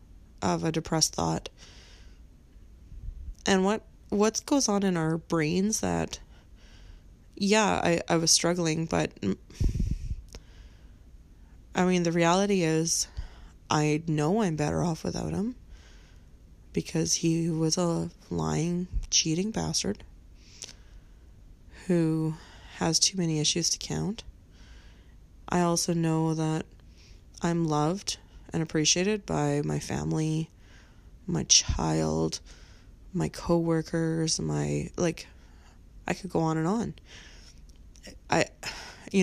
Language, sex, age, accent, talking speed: English, female, 20-39, American, 105 wpm